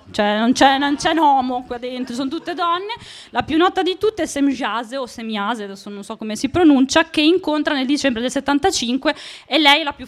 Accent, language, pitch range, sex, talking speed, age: native, Italian, 230-295 Hz, female, 215 wpm, 20-39